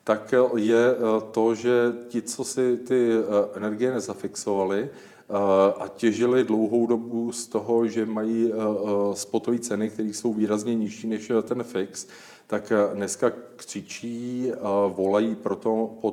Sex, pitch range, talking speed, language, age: male, 100-110 Hz, 120 wpm, Czech, 40-59